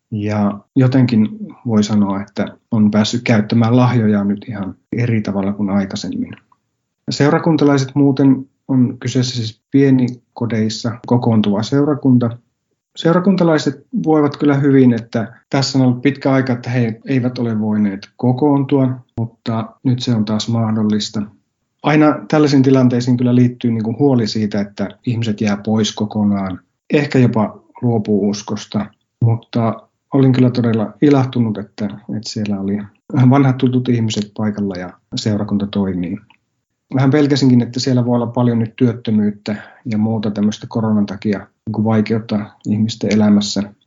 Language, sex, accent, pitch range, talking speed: Finnish, male, native, 105-125 Hz, 125 wpm